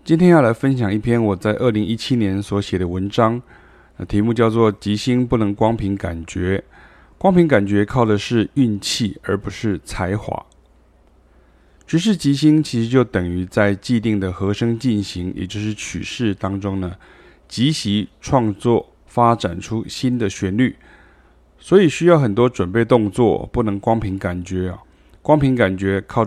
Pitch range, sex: 95-115 Hz, male